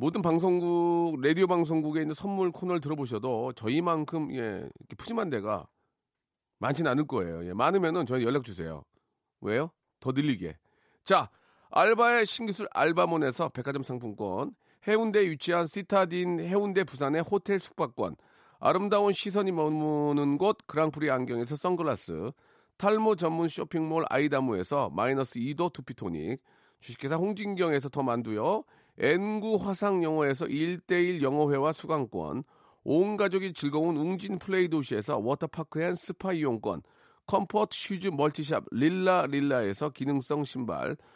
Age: 40-59